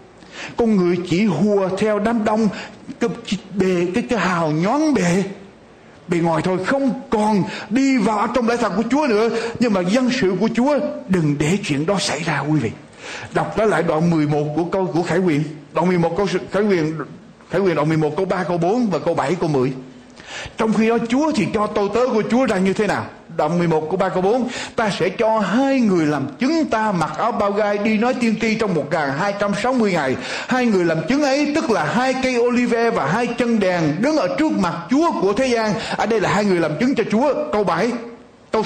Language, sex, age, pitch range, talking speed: Vietnamese, male, 60-79, 180-245 Hz, 230 wpm